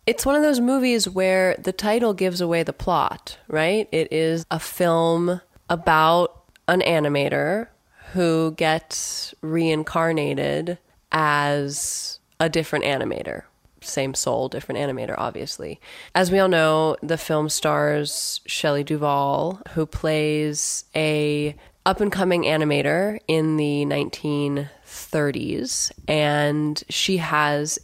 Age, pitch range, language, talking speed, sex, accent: 20-39, 145-175 Hz, English, 110 wpm, female, American